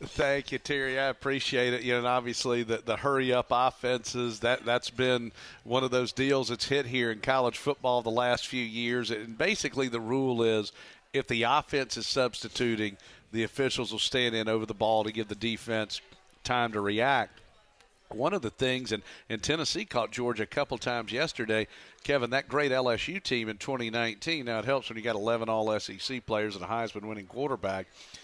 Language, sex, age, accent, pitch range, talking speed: English, male, 50-69, American, 115-135 Hz, 190 wpm